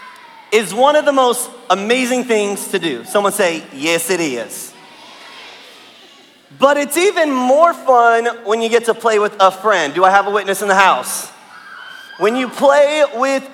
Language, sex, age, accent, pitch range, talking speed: English, male, 30-49, American, 210-275 Hz, 175 wpm